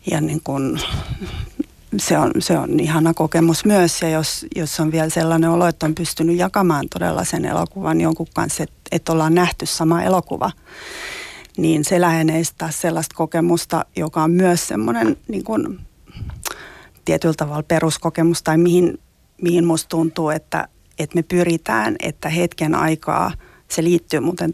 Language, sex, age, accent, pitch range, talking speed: Finnish, female, 30-49, native, 155-175 Hz, 150 wpm